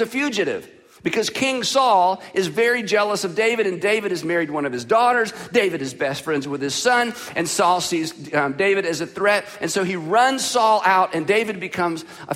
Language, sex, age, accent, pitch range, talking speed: English, male, 50-69, American, 165-225 Hz, 210 wpm